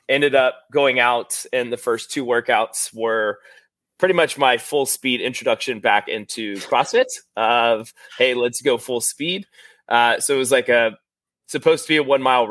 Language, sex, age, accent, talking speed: English, male, 20-39, American, 170 wpm